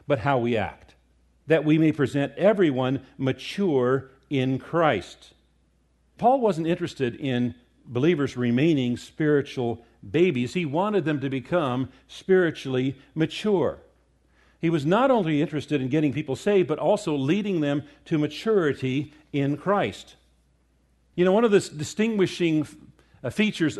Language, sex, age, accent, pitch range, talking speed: English, male, 50-69, American, 125-170 Hz, 130 wpm